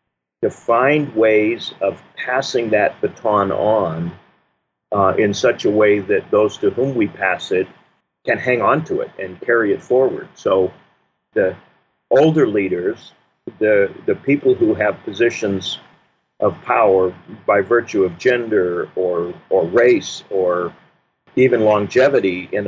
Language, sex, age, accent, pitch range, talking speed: English, male, 50-69, American, 95-135 Hz, 140 wpm